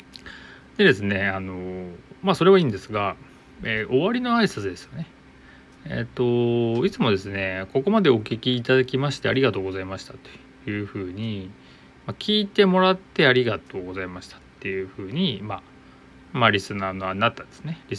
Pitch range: 95-140 Hz